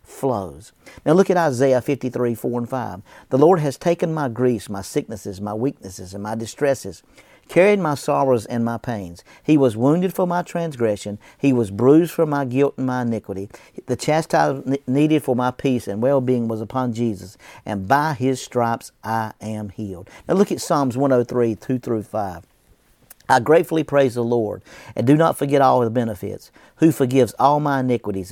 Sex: male